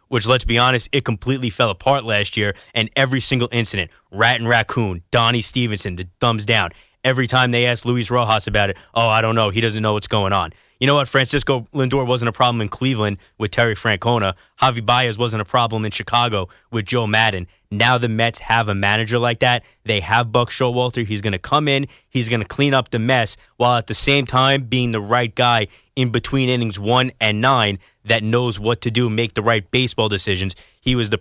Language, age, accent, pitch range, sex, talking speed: English, 20-39, American, 110-130 Hz, male, 220 wpm